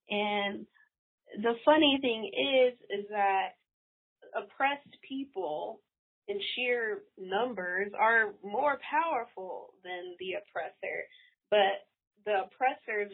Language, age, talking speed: English, 20-39, 95 wpm